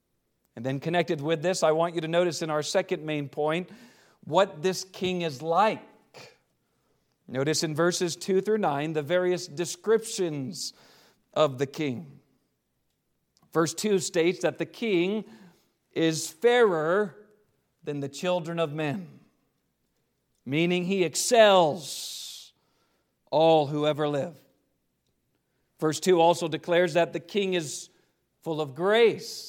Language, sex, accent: English, male, American